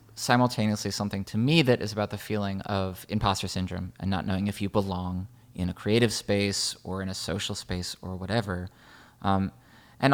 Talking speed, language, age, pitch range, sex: 185 wpm, English, 20-39, 95-115 Hz, male